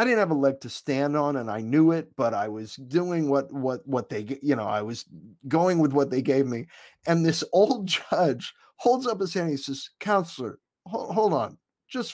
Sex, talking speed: male, 215 wpm